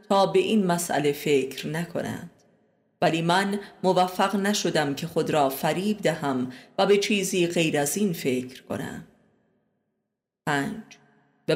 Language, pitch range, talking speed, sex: Persian, 160-205 Hz, 130 wpm, female